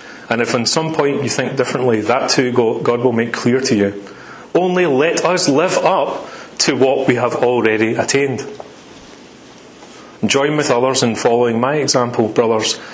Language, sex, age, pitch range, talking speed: English, male, 30-49, 110-125 Hz, 160 wpm